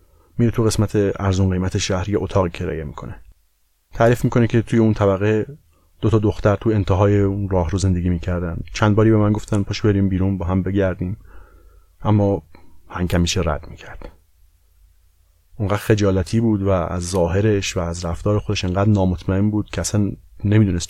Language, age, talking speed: Persian, 30-49, 160 wpm